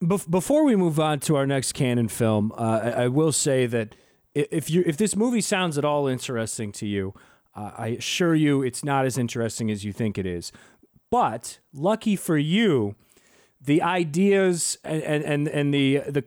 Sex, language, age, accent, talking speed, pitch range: male, English, 30-49, American, 180 wpm, 130-170 Hz